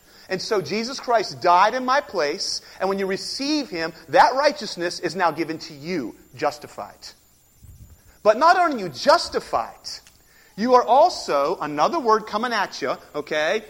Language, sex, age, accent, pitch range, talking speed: English, male, 40-59, American, 200-285 Hz, 160 wpm